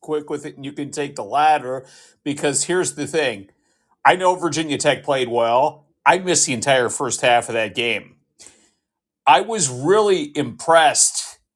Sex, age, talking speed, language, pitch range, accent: male, 50-69, 165 wpm, English, 125-150 Hz, American